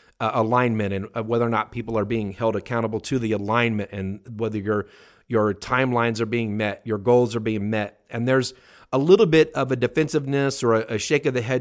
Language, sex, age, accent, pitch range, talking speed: English, male, 40-59, American, 110-145 Hz, 215 wpm